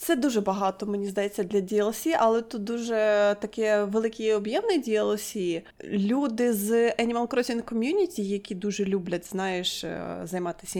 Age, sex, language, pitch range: 20-39, female, Ukrainian, 185-225 Hz